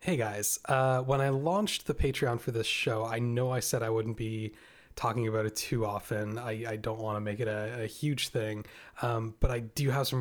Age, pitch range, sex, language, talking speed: 20-39, 110-125 Hz, male, English, 235 wpm